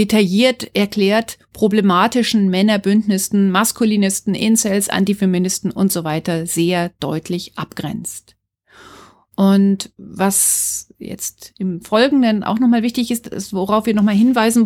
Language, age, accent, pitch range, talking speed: German, 40-59, German, 190-230 Hz, 110 wpm